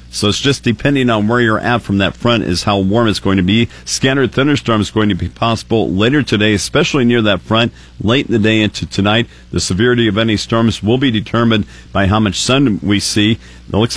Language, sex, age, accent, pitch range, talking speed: English, male, 50-69, American, 95-115 Hz, 230 wpm